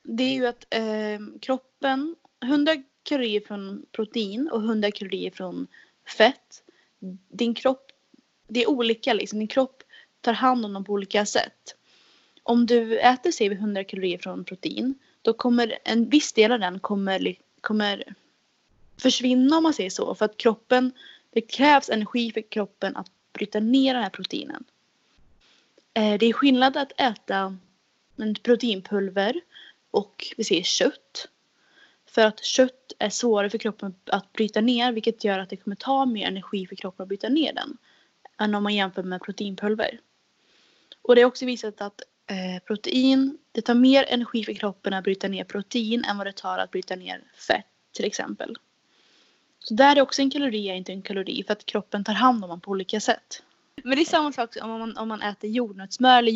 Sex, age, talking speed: female, 20-39, 175 wpm